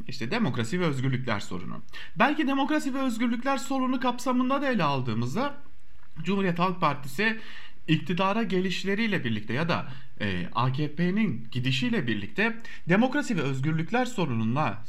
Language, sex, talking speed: German, male, 115 wpm